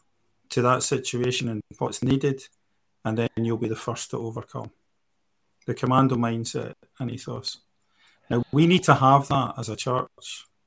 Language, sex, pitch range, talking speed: English, male, 120-140 Hz, 155 wpm